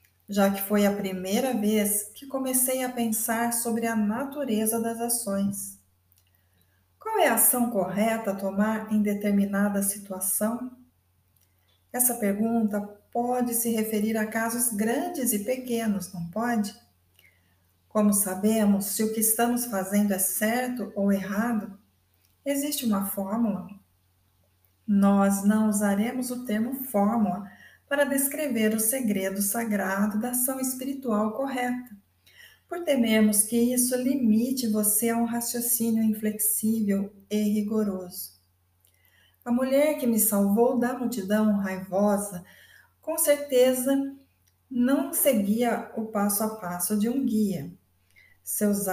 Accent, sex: Brazilian, female